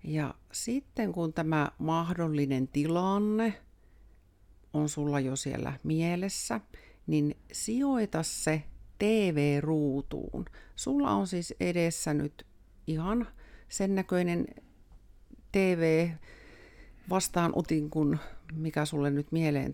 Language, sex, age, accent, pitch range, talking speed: Finnish, female, 50-69, native, 130-180 Hz, 85 wpm